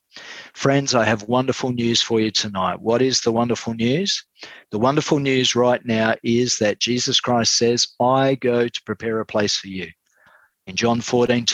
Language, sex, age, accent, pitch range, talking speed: English, male, 40-59, Australian, 110-125 Hz, 175 wpm